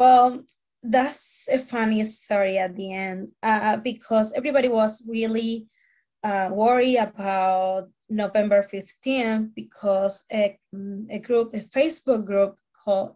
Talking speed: 120 wpm